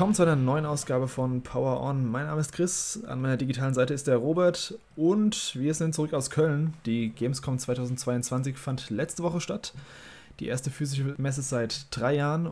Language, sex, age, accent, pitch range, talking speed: German, male, 20-39, German, 120-155 Hz, 185 wpm